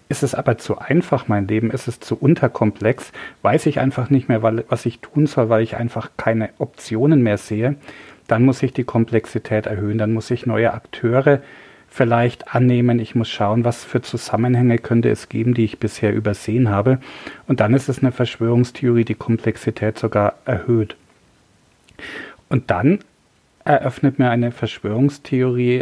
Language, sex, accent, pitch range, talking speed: German, male, German, 110-130 Hz, 165 wpm